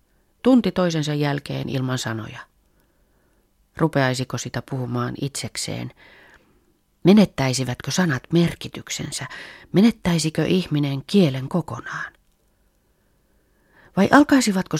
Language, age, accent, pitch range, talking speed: Finnish, 30-49, native, 125-165 Hz, 75 wpm